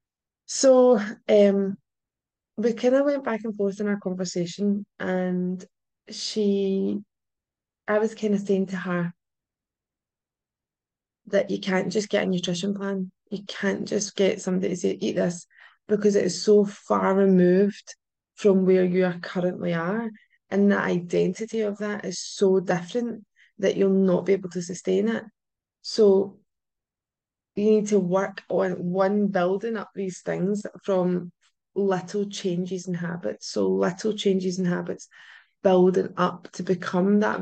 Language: English